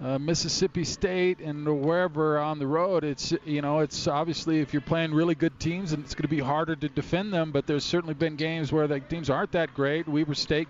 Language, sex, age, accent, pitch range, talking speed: English, male, 40-59, American, 145-175 Hz, 230 wpm